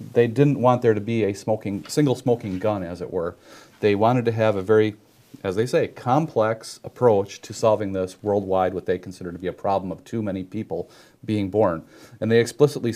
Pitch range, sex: 100-120 Hz, male